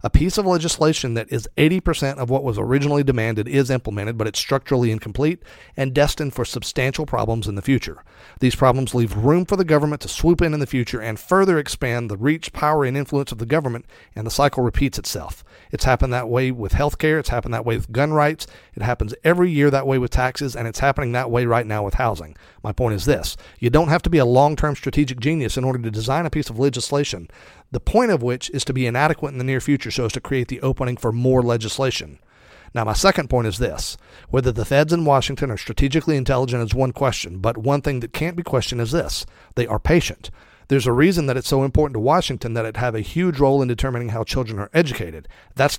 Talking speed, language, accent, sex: 235 wpm, English, American, male